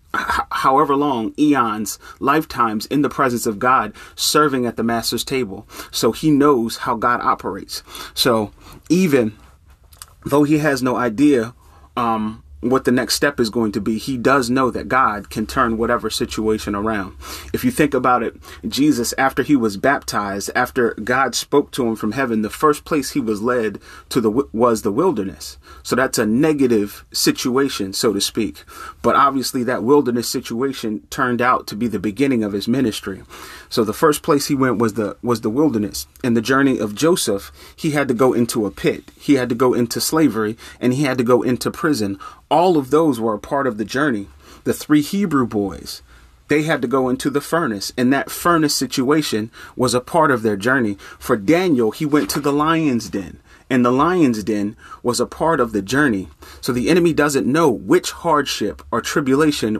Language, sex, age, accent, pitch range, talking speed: English, male, 30-49, American, 110-145 Hz, 190 wpm